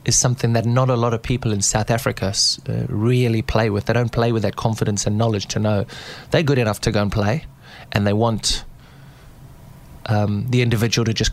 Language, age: English, 20-39